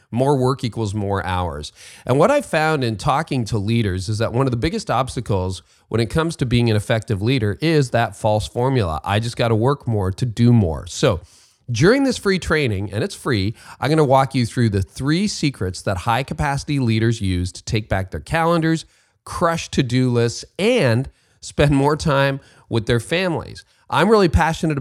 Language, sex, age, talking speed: English, male, 40-59, 195 wpm